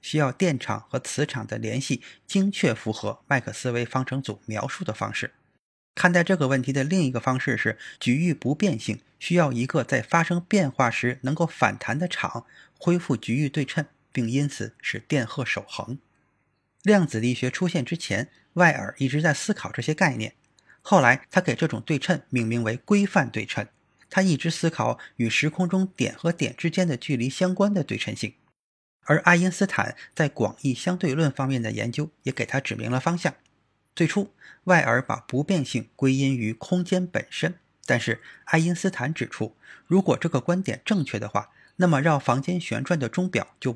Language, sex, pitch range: Chinese, male, 120-175 Hz